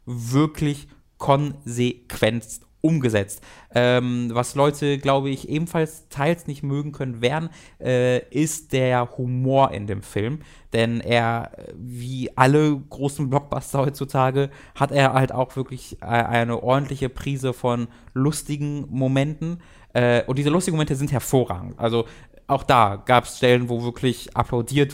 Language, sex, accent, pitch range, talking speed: German, male, German, 115-140 Hz, 130 wpm